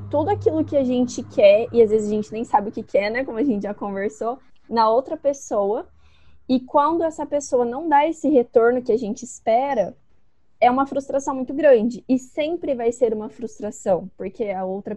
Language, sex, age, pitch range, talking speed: Portuguese, female, 20-39, 225-280 Hz, 205 wpm